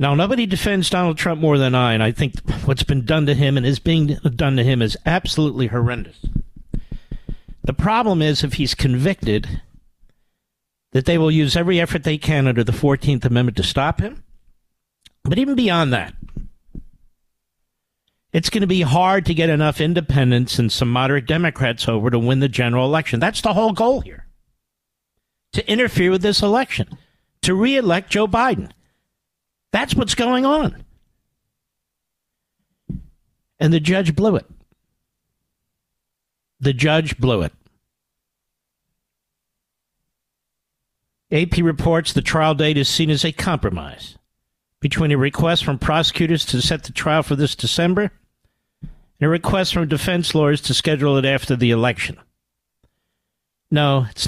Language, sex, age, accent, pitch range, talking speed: English, male, 50-69, American, 125-170 Hz, 150 wpm